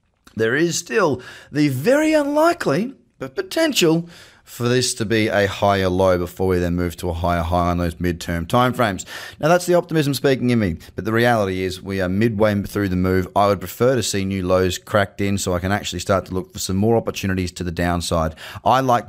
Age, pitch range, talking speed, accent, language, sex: 20-39, 90-120 Hz, 215 wpm, Australian, English, male